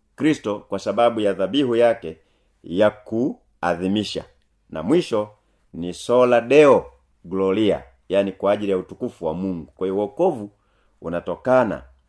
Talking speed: 120 wpm